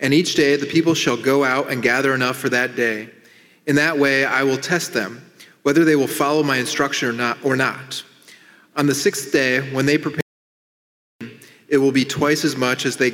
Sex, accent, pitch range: male, American, 130-155 Hz